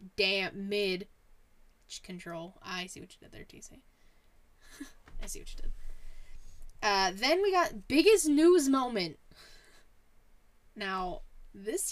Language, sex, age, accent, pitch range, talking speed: English, female, 10-29, American, 175-230 Hz, 120 wpm